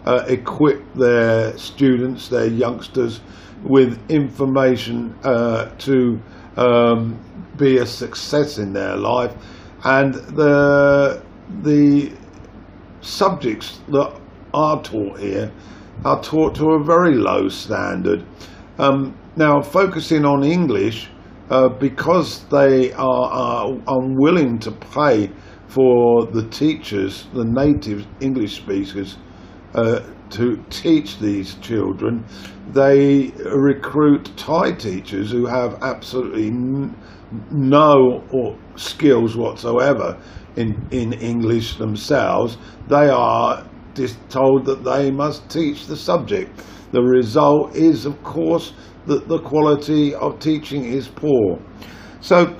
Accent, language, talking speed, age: British, English, 110 wpm, 50-69